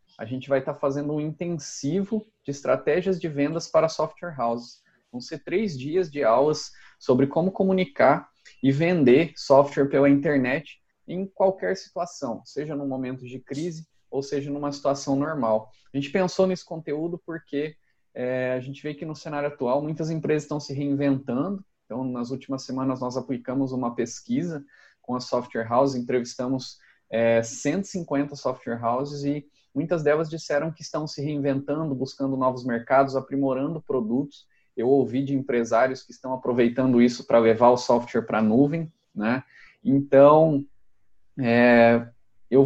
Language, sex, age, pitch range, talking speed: Portuguese, male, 20-39, 130-160 Hz, 150 wpm